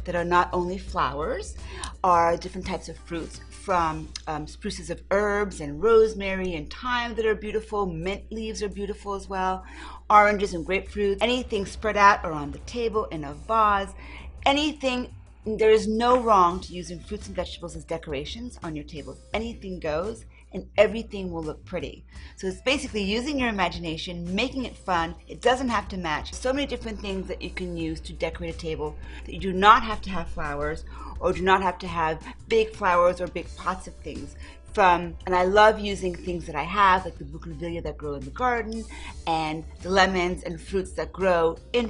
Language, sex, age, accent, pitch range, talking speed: English, female, 40-59, American, 165-210 Hz, 195 wpm